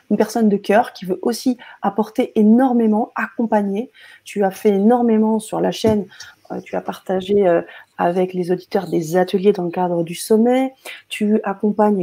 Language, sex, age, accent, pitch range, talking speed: French, female, 30-49, French, 185-225 Hz, 160 wpm